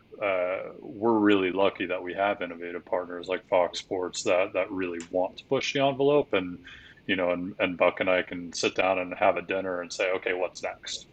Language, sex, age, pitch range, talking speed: English, male, 30-49, 90-100 Hz, 215 wpm